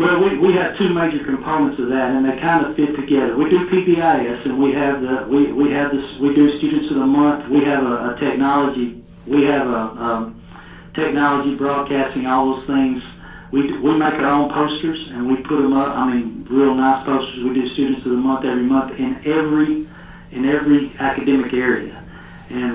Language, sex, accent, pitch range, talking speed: English, male, American, 130-145 Hz, 205 wpm